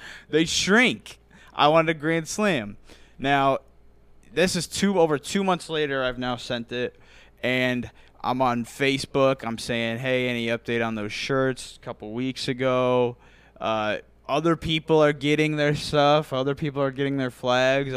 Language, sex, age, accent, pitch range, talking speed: English, male, 20-39, American, 110-140 Hz, 160 wpm